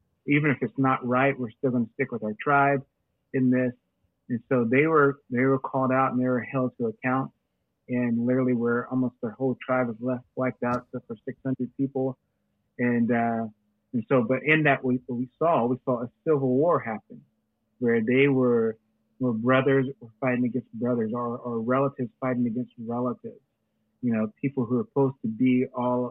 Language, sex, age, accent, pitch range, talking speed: English, male, 30-49, American, 115-130 Hz, 195 wpm